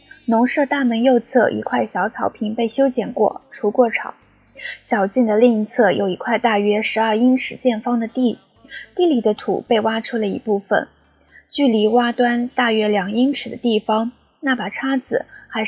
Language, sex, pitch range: Chinese, female, 220-270 Hz